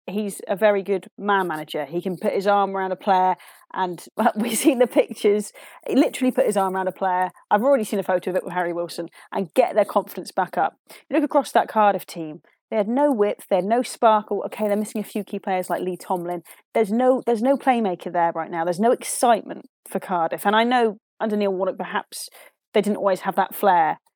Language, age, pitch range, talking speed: English, 30-49, 185-220 Hz, 230 wpm